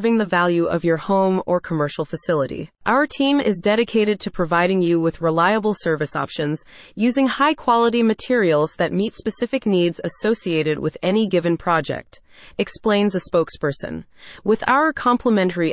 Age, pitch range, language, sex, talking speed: 30-49, 170-230 Hz, English, female, 140 wpm